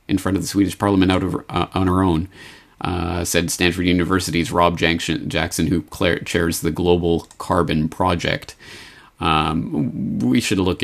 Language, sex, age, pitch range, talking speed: English, male, 30-49, 85-115 Hz, 155 wpm